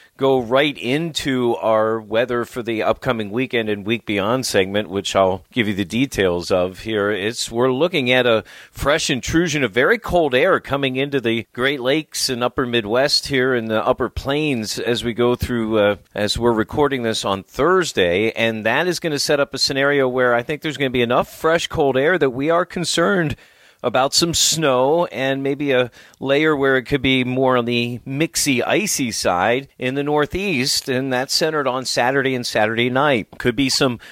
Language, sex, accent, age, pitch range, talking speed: English, male, American, 40-59, 115-140 Hz, 195 wpm